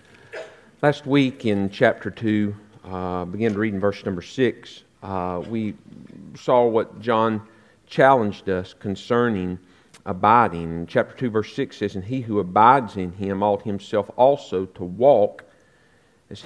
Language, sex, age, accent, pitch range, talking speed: English, male, 50-69, American, 95-125 Hz, 140 wpm